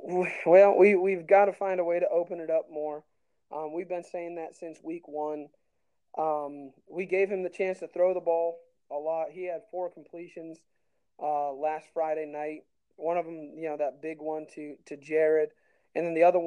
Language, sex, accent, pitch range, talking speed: English, male, American, 155-190 Hz, 205 wpm